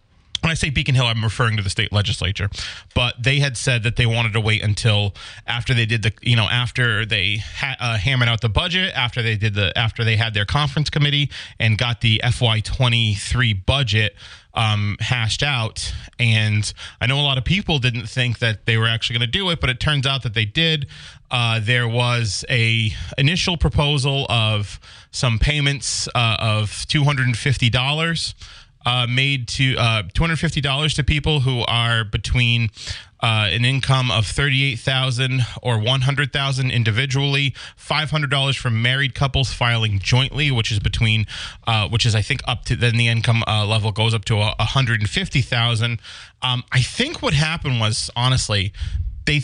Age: 30-49